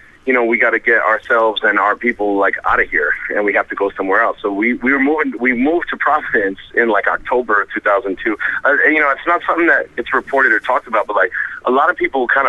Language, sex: English, male